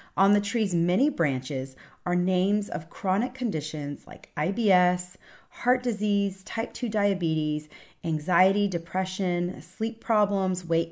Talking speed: 120 wpm